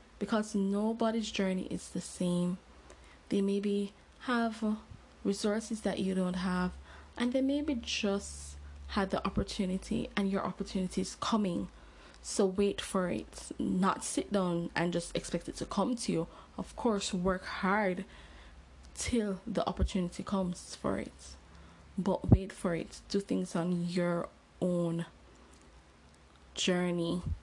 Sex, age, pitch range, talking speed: female, 10-29, 165-195 Hz, 135 wpm